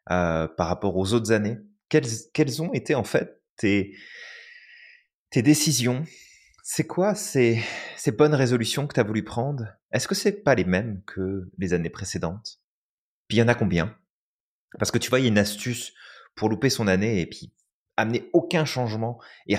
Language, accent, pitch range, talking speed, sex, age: French, French, 105-145 Hz, 185 wpm, male, 30-49